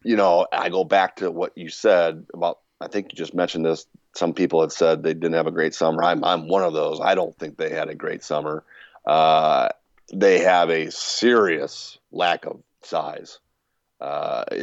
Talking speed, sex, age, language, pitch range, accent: 195 wpm, male, 40-59, English, 80-90 Hz, American